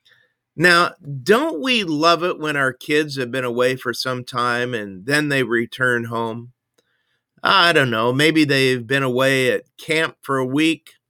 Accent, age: American, 50-69